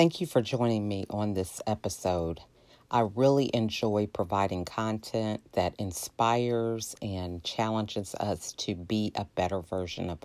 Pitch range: 100-120 Hz